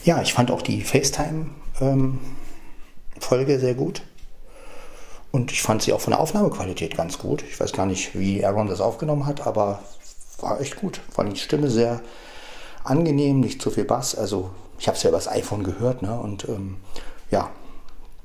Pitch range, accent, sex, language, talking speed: 95-135 Hz, German, male, German, 180 wpm